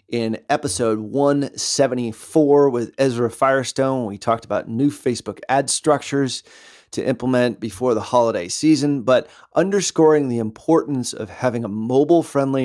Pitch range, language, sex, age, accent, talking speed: 115-145 Hz, English, male, 30-49, American, 130 wpm